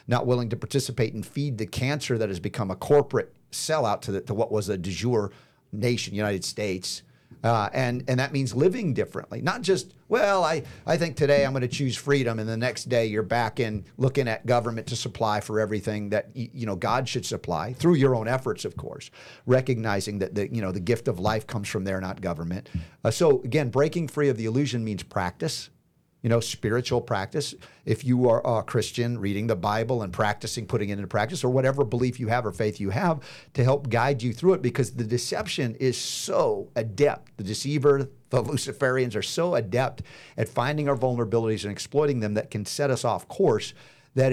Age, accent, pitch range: 50-69, American, 110-140 Hz